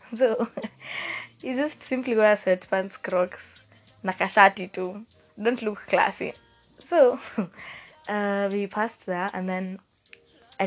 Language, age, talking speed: English, 20-39, 125 wpm